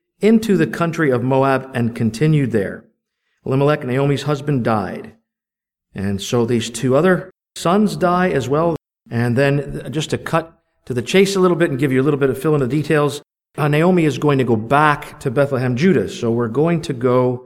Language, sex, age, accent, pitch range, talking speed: English, male, 50-69, American, 125-175 Hz, 195 wpm